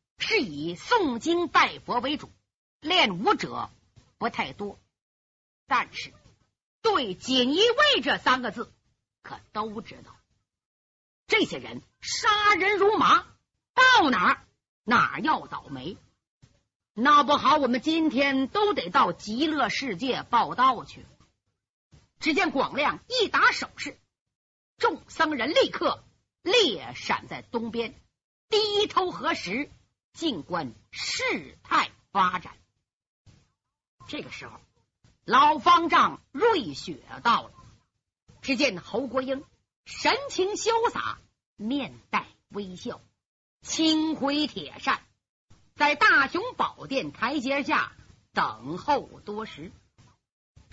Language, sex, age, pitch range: Chinese, female, 50-69, 220-355 Hz